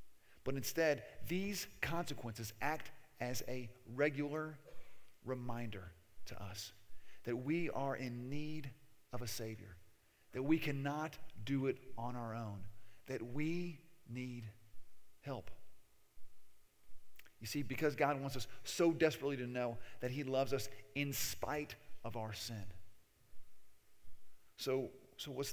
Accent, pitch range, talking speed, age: American, 110-140 Hz, 125 wpm, 40-59